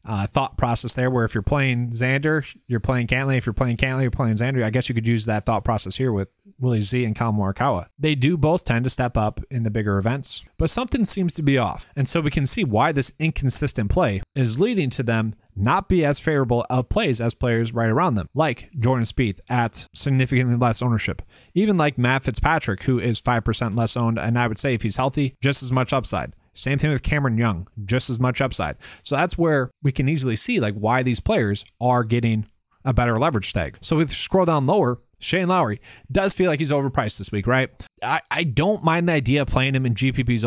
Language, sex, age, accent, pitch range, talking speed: English, male, 30-49, American, 115-140 Hz, 230 wpm